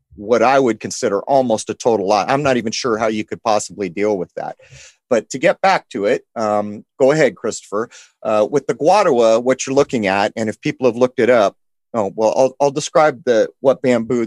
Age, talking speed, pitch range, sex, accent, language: 40-59, 220 wpm, 105-135 Hz, male, American, English